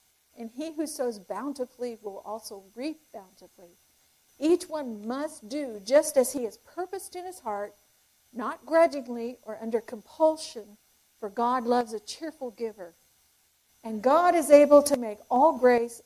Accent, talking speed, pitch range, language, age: American, 150 wpm, 215-285 Hz, English, 50-69